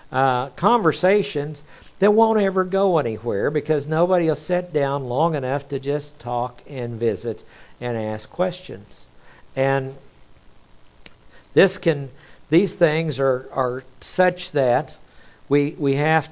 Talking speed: 125 wpm